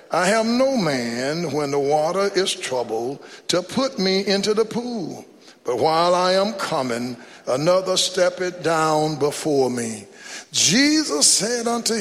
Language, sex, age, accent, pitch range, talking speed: English, male, 60-79, American, 150-215 Hz, 145 wpm